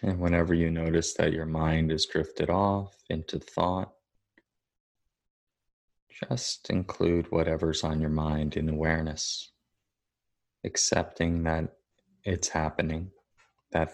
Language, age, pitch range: English, 20-39, 80-100 Hz